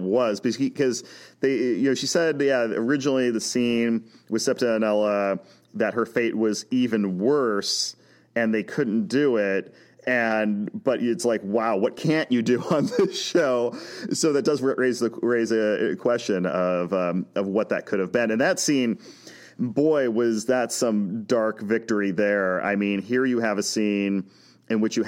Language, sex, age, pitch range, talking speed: English, male, 30-49, 105-130 Hz, 175 wpm